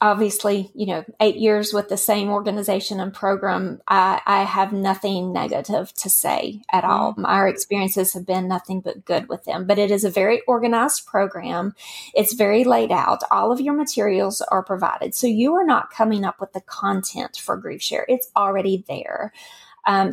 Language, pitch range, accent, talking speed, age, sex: English, 195-245 Hz, American, 185 wpm, 40-59, female